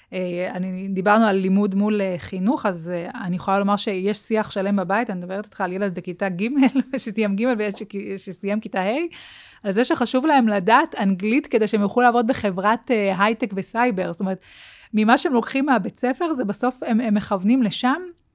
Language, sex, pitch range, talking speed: Hebrew, female, 185-225 Hz, 190 wpm